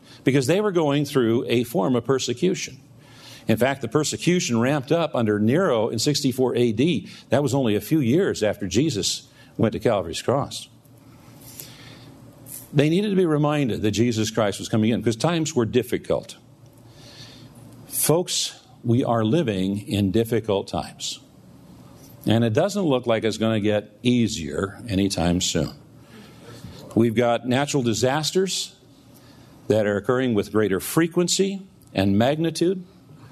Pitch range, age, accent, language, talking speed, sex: 115-150 Hz, 50-69, American, English, 140 wpm, male